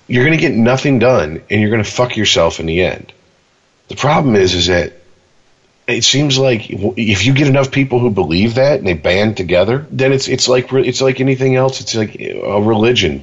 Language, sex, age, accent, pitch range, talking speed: English, male, 40-59, American, 110-135 Hz, 215 wpm